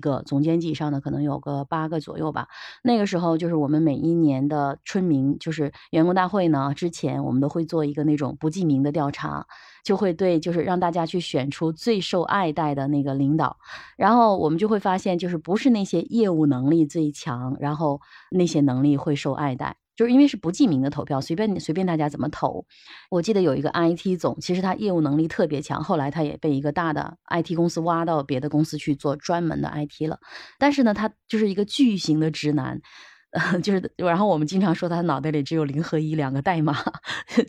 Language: Chinese